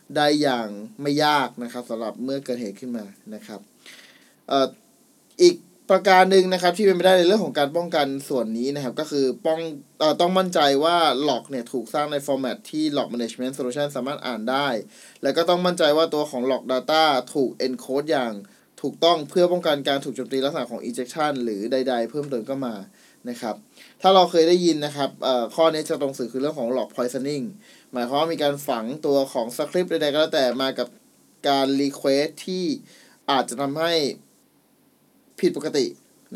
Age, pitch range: 20-39, 130-160 Hz